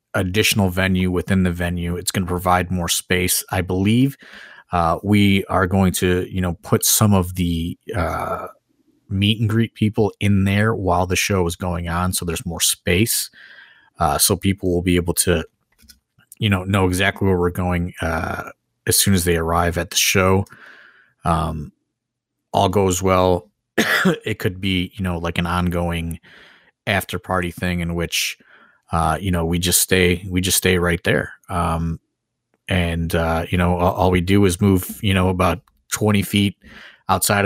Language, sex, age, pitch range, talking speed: English, male, 30-49, 90-100 Hz, 175 wpm